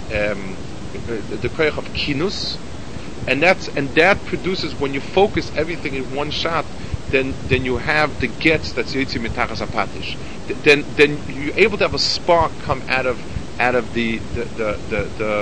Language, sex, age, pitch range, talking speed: English, male, 50-69, 120-150 Hz, 165 wpm